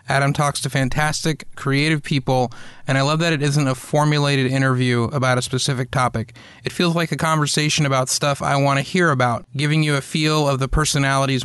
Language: English